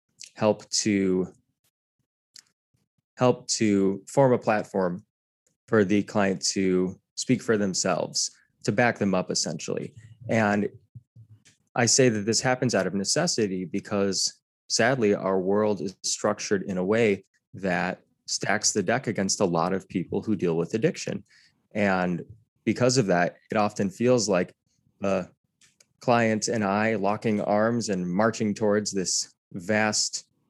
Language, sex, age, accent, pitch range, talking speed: English, male, 20-39, American, 95-115 Hz, 135 wpm